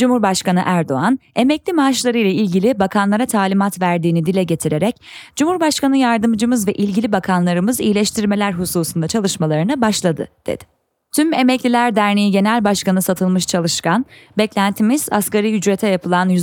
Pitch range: 180-240 Hz